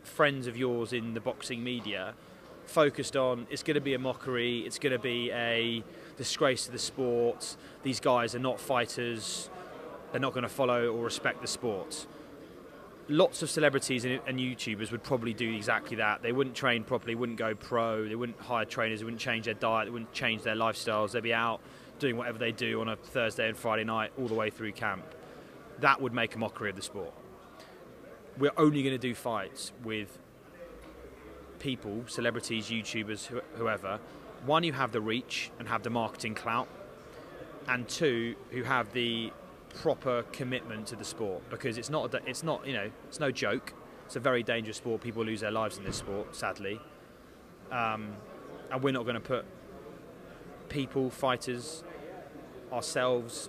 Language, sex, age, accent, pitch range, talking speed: English, male, 20-39, British, 115-130 Hz, 180 wpm